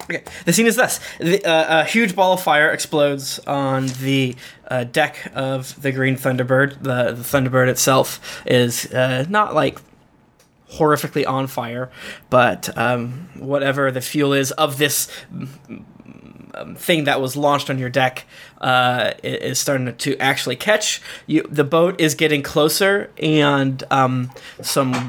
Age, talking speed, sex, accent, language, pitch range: 20-39, 150 wpm, male, American, English, 130-165 Hz